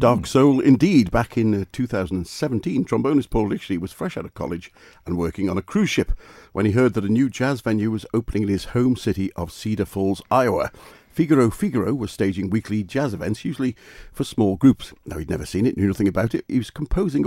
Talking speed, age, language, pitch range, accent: 215 wpm, 50-69, English, 95-120 Hz, British